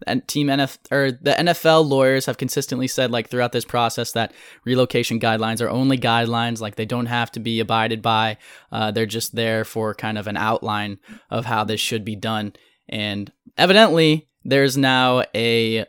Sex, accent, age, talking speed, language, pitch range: male, American, 10-29, 180 wpm, English, 120-150 Hz